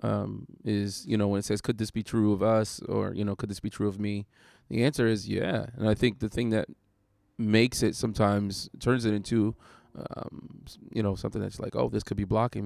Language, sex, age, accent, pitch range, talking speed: English, male, 20-39, American, 105-115 Hz, 230 wpm